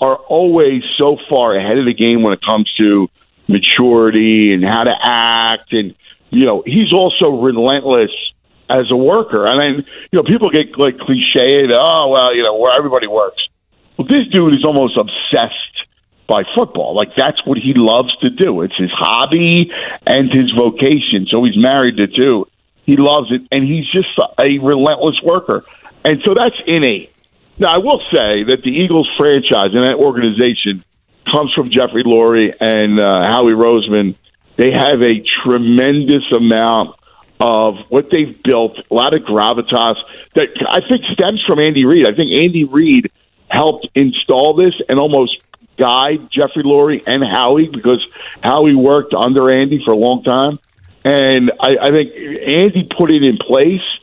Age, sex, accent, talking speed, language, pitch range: 50-69, male, American, 175 wpm, English, 115-150 Hz